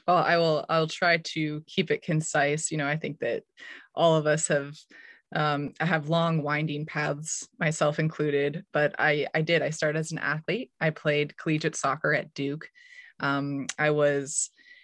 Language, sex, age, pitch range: English, female, 20-39, 150-165 Hz